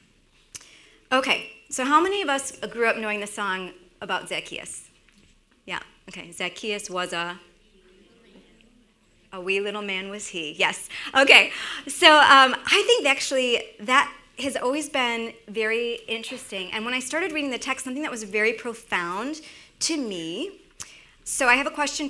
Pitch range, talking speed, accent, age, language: 200-275 Hz, 150 wpm, American, 30-49, English